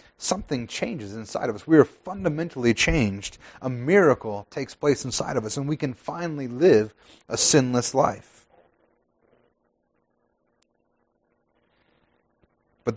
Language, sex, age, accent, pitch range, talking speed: English, male, 30-49, American, 120-150 Hz, 115 wpm